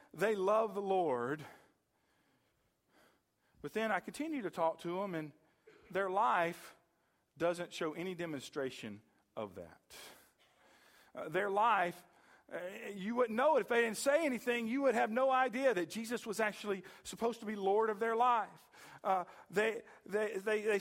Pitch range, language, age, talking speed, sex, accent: 195-260 Hz, English, 40-59, 145 wpm, male, American